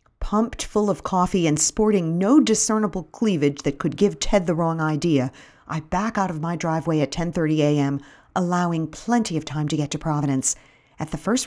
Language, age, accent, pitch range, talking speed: English, 50-69, American, 150-205 Hz, 190 wpm